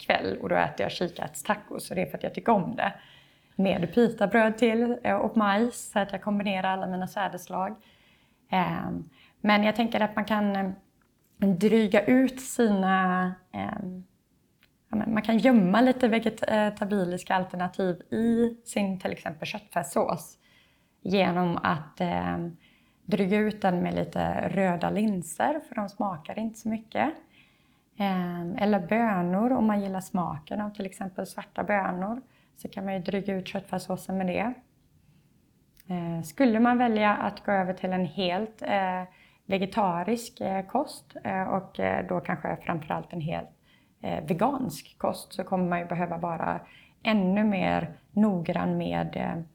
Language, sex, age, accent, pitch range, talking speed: Swedish, female, 20-39, native, 180-215 Hz, 135 wpm